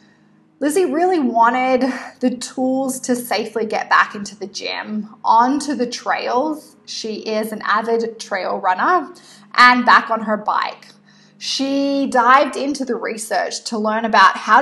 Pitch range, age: 215-245 Hz, 20-39